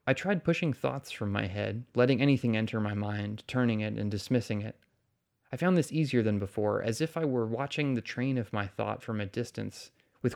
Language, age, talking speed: English, 30-49, 215 wpm